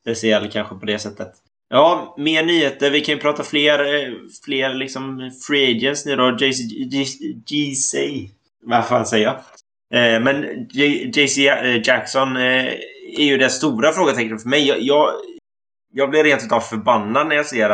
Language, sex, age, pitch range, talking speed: Swedish, male, 20-39, 105-130 Hz, 160 wpm